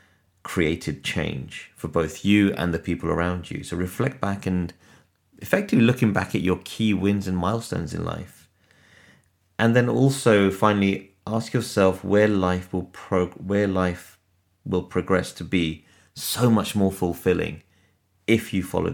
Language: English